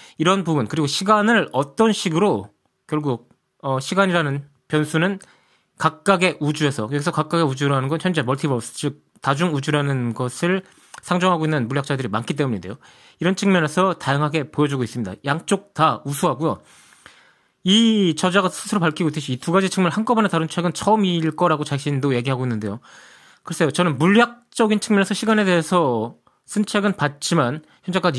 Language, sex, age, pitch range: Korean, male, 20-39, 140-190 Hz